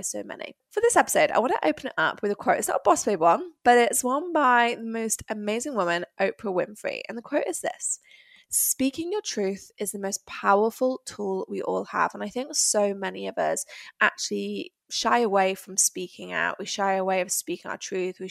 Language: English